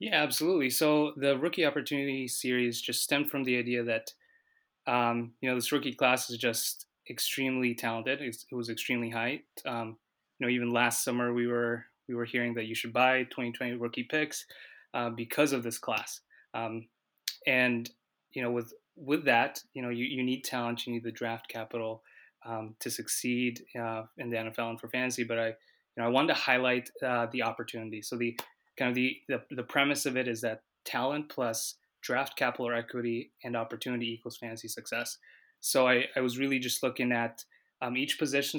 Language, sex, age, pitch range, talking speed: English, male, 20-39, 115-130 Hz, 195 wpm